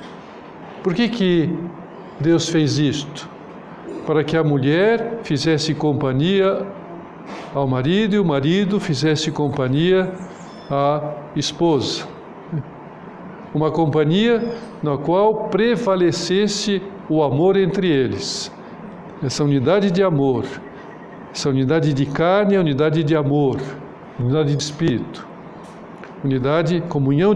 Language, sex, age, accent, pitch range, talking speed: Portuguese, male, 60-79, Brazilian, 145-195 Hz, 105 wpm